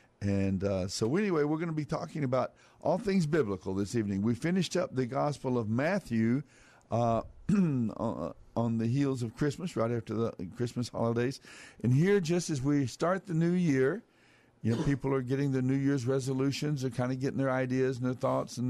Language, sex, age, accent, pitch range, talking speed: English, male, 60-79, American, 120-145 Hz, 195 wpm